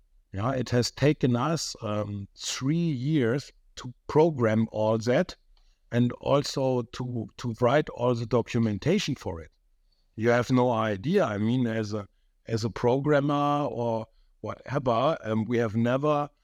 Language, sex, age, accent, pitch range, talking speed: English, male, 50-69, German, 115-140 Hz, 140 wpm